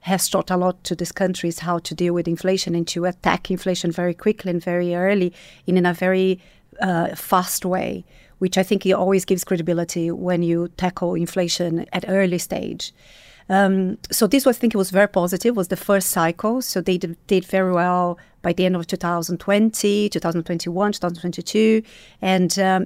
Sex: female